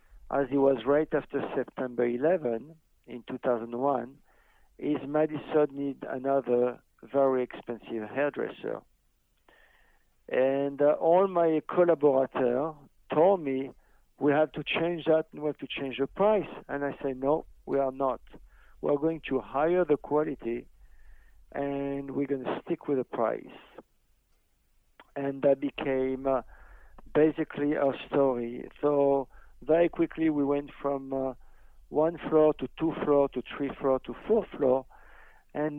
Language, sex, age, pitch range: English, male, 50-69, 135-150 Hz